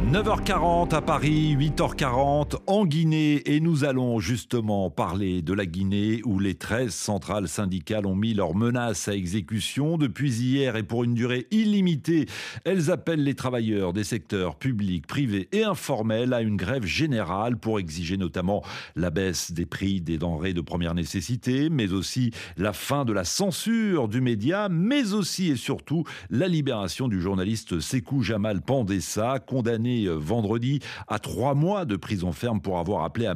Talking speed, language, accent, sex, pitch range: 160 wpm, French, French, male, 100-150 Hz